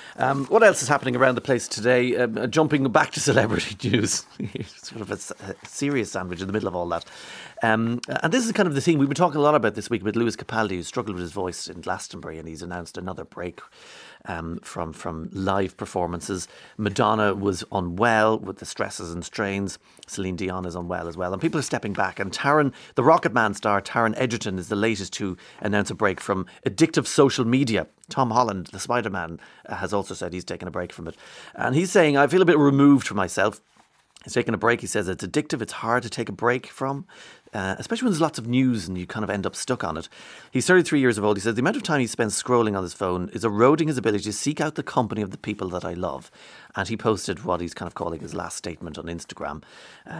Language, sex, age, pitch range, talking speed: English, male, 30-49, 95-130 Hz, 240 wpm